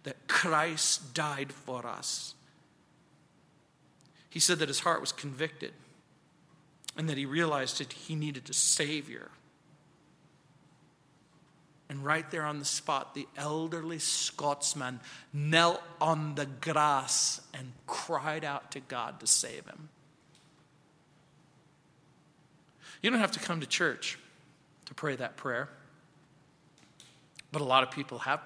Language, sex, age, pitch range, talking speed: English, male, 40-59, 145-160 Hz, 125 wpm